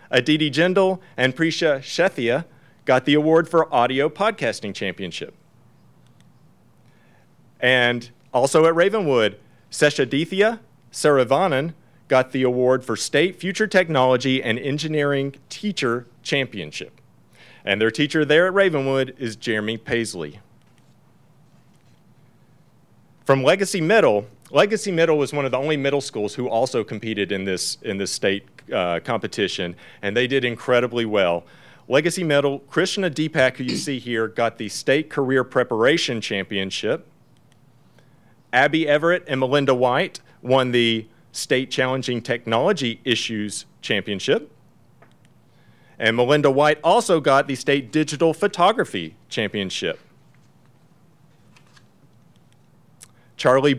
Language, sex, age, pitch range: English, male, 40-59, 120-155 Hz